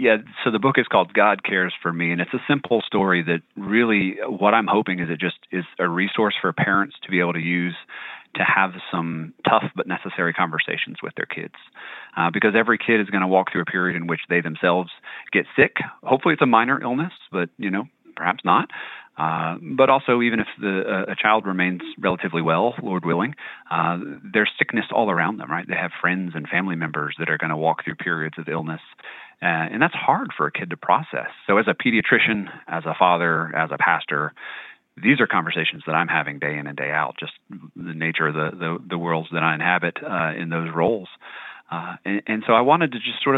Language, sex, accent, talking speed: English, male, American, 220 wpm